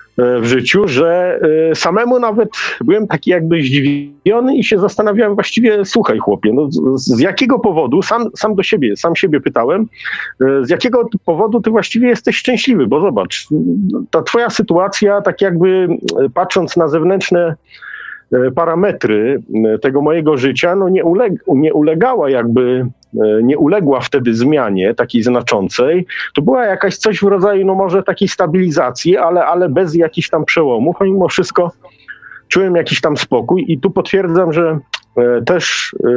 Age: 40-59